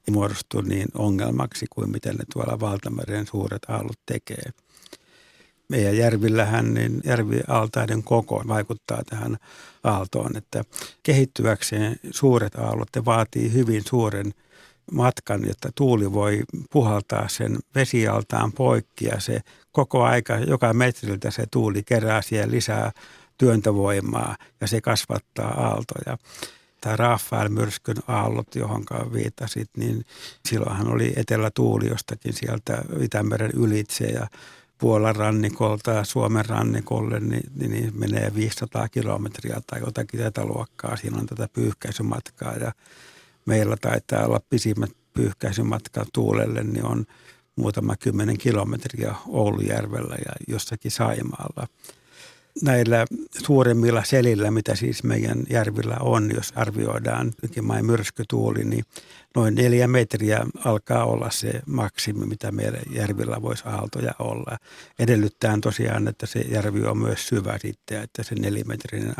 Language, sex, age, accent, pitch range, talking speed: Finnish, male, 60-79, native, 105-120 Hz, 115 wpm